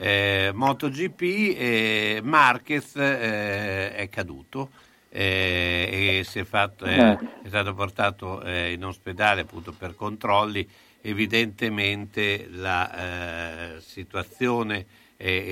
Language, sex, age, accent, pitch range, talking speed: Italian, male, 60-79, native, 95-120 Hz, 110 wpm